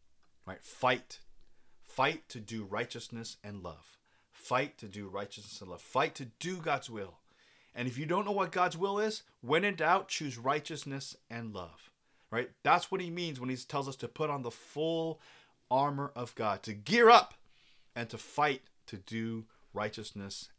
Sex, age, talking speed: male, 30-49, 180 wpm